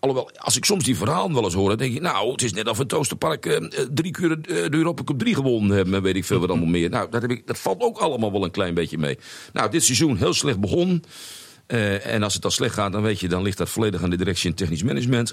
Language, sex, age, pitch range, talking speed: Dutch, male, 50-69, 90-110 Hz, 300 wpm